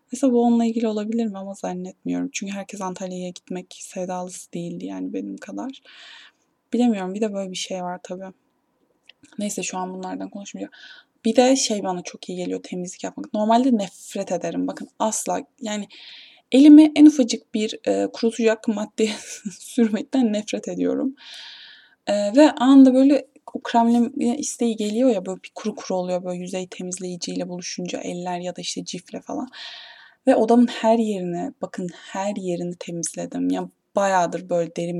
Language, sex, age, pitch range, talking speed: Turkish, female, 10-29, 185-240 Hz, 155 wpm